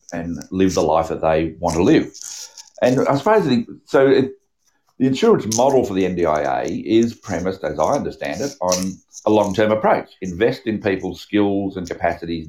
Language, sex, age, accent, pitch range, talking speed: English, male, 50-69, Australian, 85-105 Hz, 170 wpm